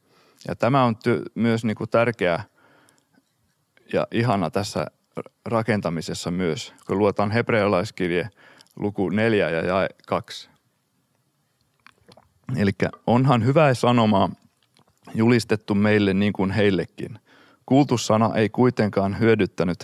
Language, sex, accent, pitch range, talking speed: Finnish, male, native, 100-120 Hz, 100 wpm